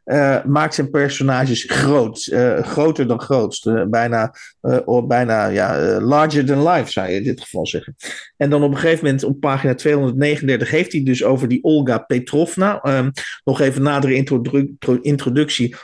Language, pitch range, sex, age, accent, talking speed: Dutch, 130-160 Hz, male, 50-69, Dutch, 165 wpm